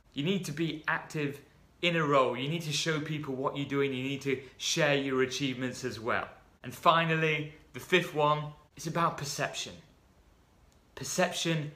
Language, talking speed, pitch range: English, 170 wpm, 145-175 Hz